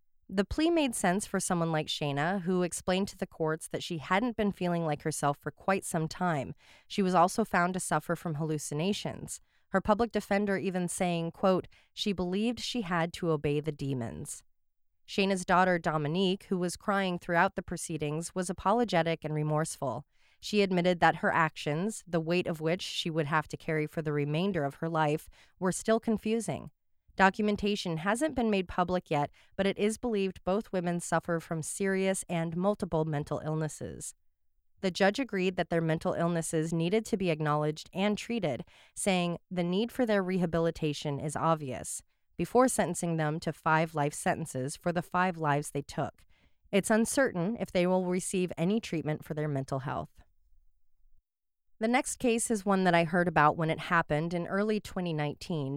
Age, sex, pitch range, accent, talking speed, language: 30-49, female, 155-195 Hz, American, 175 wpm, English